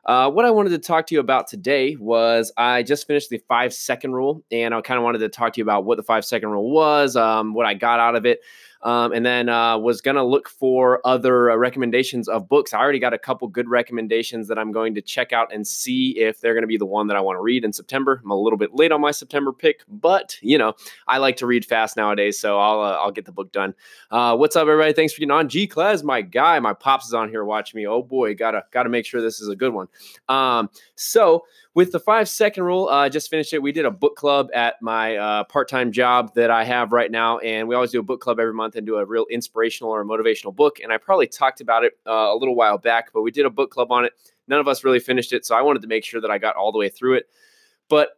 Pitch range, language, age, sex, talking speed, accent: 115-145 Hz, English, 20-39, male, 275 wpm, American